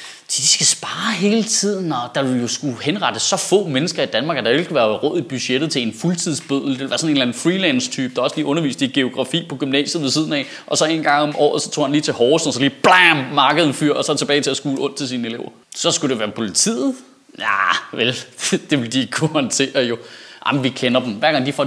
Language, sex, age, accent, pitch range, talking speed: Danish, male, 30-49, native, 135-165 Hz, 270 wpm